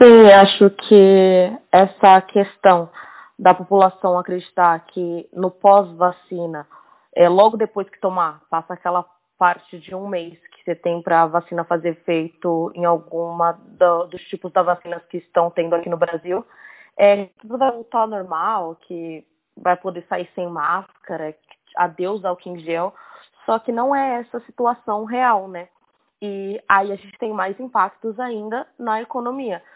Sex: female